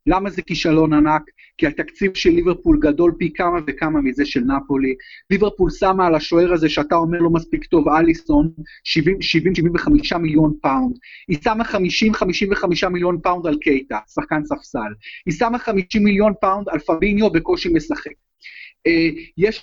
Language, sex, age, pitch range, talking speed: Hebrew, male, 30-49, 170-250 Hz, 145 wpm